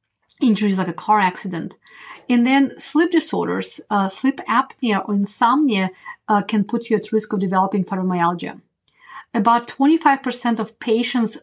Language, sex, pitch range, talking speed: English, female, 200-260 Hz, 140 wpm